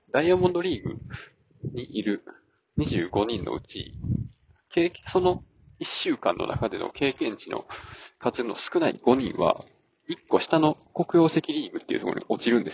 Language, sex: Japanese, male